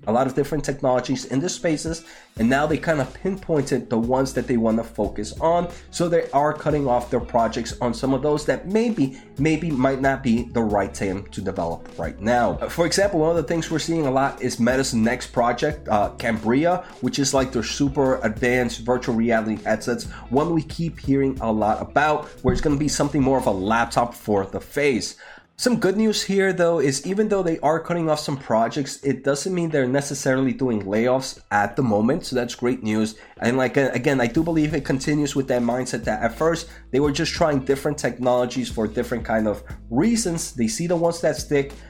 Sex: male